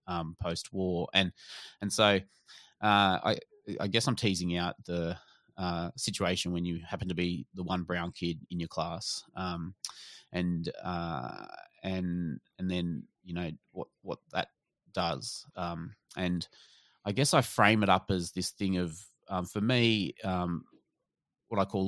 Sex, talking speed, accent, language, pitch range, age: male, 160 wpm, Australian, English, 85-95 Hz, 20-39